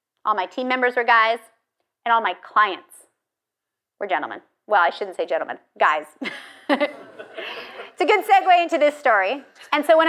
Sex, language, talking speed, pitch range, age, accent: female, English, 165 wpm, 210-280 Hz, 30-49, American